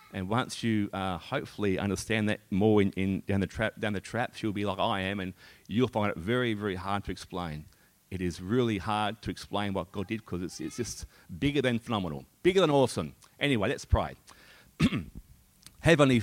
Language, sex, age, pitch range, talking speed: English, male, 40-59, 95-115 Hz, 190 wpm